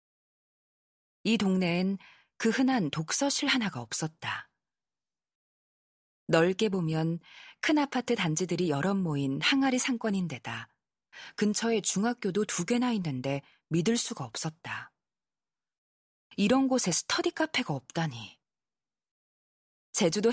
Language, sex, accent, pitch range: Korean, female, native, 155-250 Hz